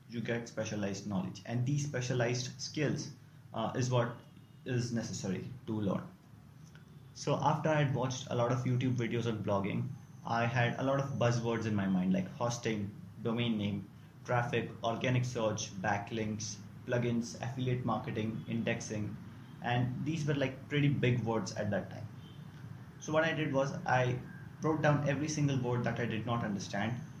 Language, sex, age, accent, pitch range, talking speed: English, male, 30-49, Indian, 115-140 Hz, 165 wpm